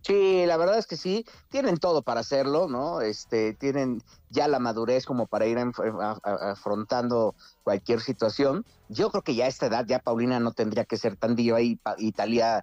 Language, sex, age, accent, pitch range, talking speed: Spanish, male, 50-69, Mexican, 110-140 Hz, 200 wpm